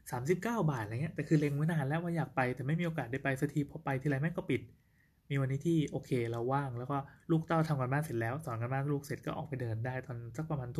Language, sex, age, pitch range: Thai, male, 20-39, 125-155 Hz